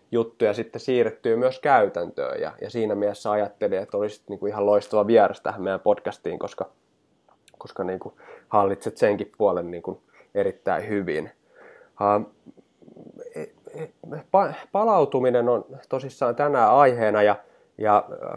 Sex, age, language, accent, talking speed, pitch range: male, 20-39, Finnish, native, 120 wpm, 105-140 Hz